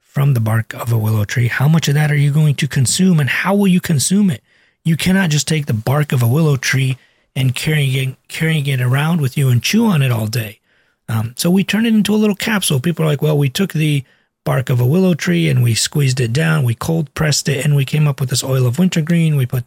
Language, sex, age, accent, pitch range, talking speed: English, male, 40-59, American, 125-170 Hz, 260 wpm